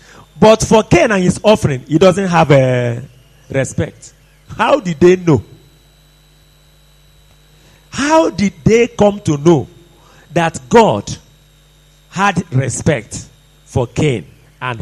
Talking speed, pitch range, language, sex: 110 wpm, 140-185 Hz, English, male